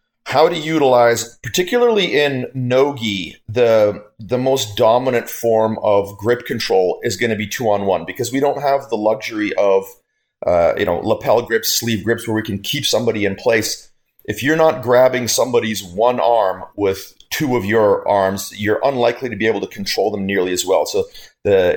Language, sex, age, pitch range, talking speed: English, male, 40-59, 105-140 Hz, 180 wpm